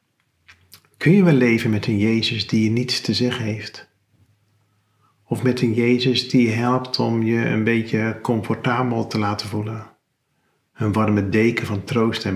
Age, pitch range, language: 40-59, 110-130 Hz, Dutch